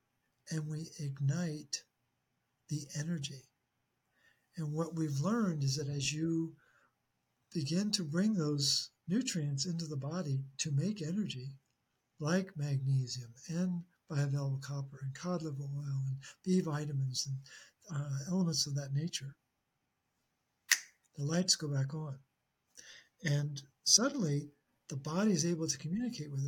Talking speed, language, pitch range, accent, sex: 125 wpm, English, 140-165 Hz, American, male